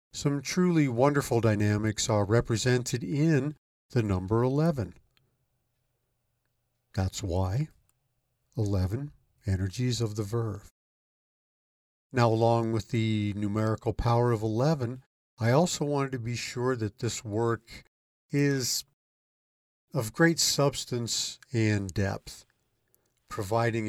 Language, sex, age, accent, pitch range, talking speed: English, male, 50-69, American, 105-130 Hz, 105 wpm